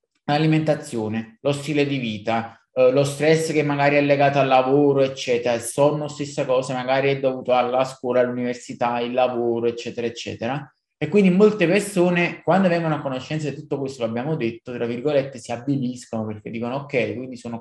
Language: Italian